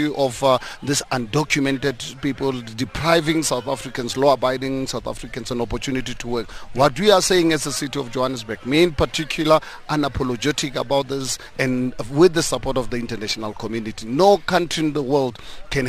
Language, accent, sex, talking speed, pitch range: English, South African, male, 165 wpm, 125-150 Hz